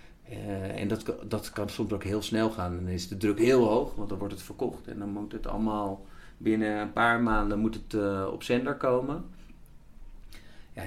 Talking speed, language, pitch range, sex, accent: 205 wpm, Dutch, 95-110 Hz, male, Dutch